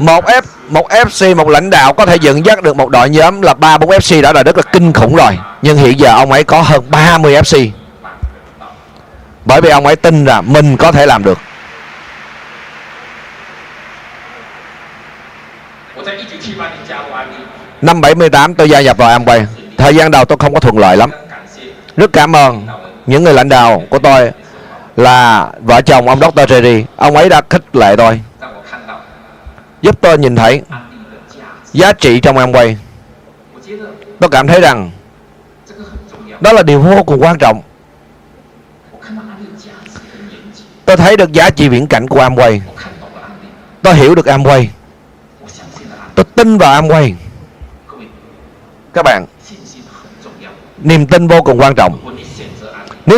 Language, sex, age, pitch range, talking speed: Vietnamese, male, 30-49, 115-165 Hz, 145 wpm